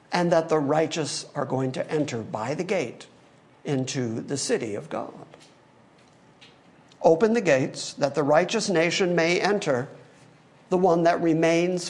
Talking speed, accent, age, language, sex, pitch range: 145 wpm, American, 50-69, English, male, 165-245 Hz